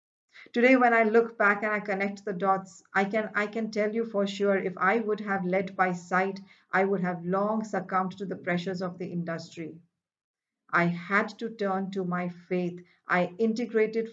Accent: Indian